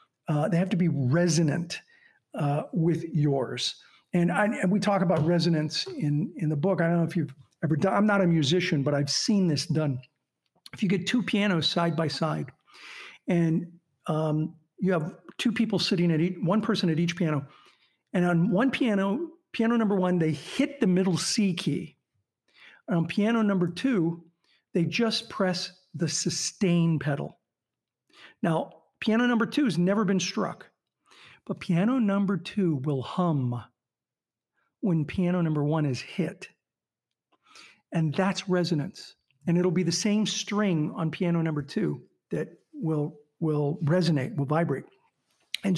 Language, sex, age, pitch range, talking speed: English, male, 50-69, 155-200 Hz, 160 wpm